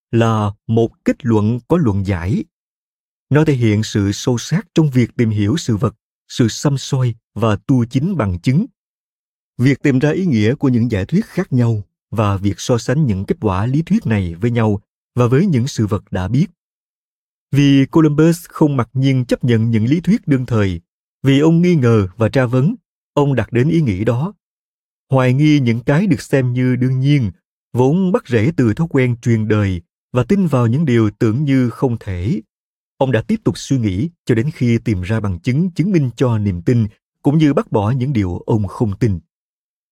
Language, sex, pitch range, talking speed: Vietnamese, male, 110-150 Hz, 205 wpm